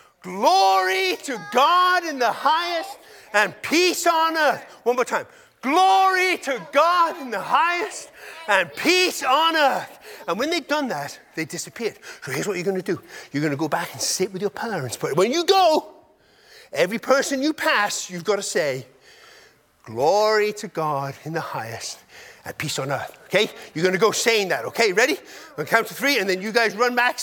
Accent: British